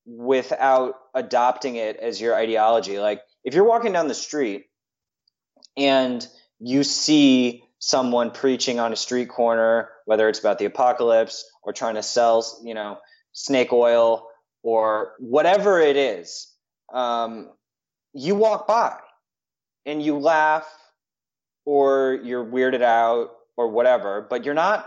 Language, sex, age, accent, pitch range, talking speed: English, male, 20-39, American, 110-140 Hz, 135 wpm